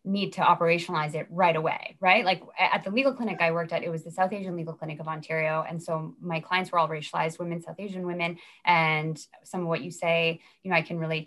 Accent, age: American, 20-39